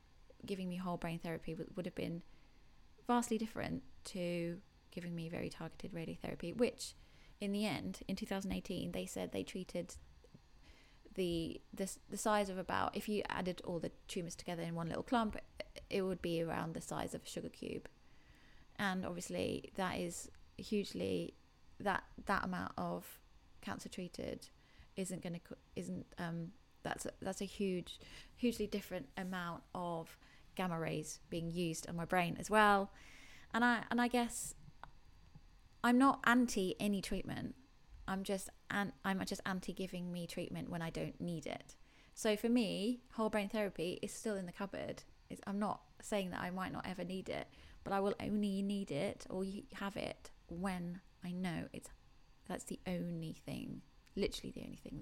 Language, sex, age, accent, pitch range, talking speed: English, female, 20-39, British, 170-210 Hz, 165 wpm